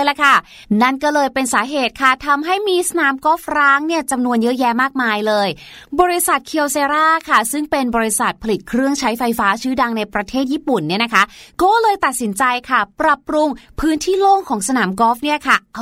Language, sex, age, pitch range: Thai, female, 30-49, 225-295 Hz